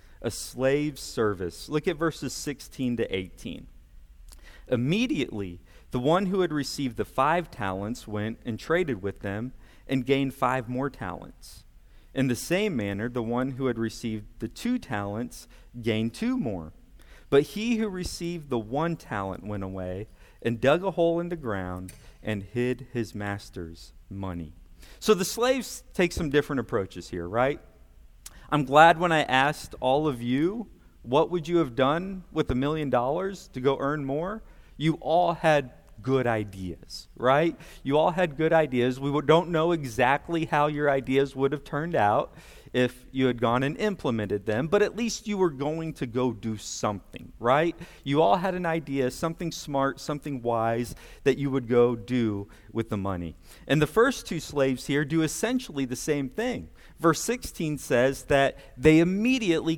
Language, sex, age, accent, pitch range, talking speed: English, male, 40-59, American, 115-165 Hz, 170 wpm